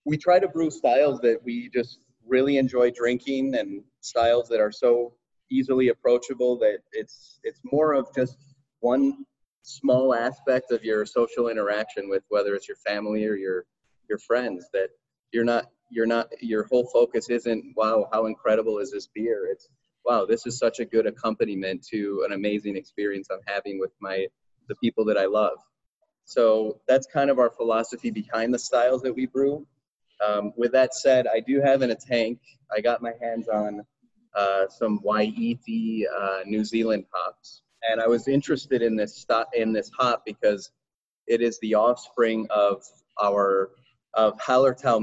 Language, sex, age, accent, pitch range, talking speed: English, male, 30-49, American, 105-135 Hz, 170 wpm